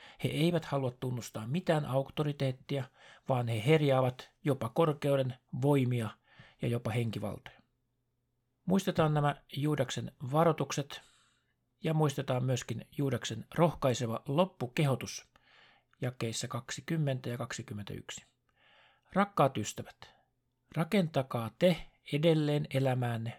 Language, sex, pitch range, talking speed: Finnish, male, 120-145 Hz, 90 wpm